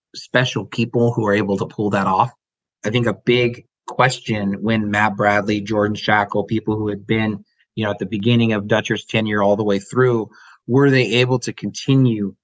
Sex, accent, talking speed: male, American, 195 wpm